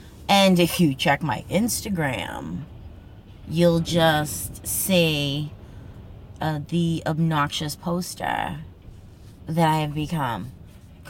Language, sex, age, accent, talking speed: English, female, 20-39, American, 90 wpm